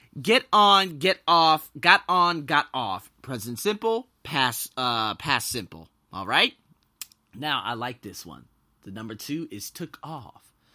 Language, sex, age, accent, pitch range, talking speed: English, male, 30-49, American, 110-175 Hz, 150 wpm